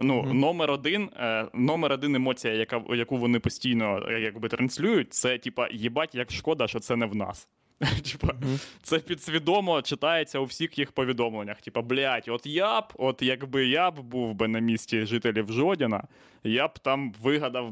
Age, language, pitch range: 20-39, Ukrainian, 115-135 Hz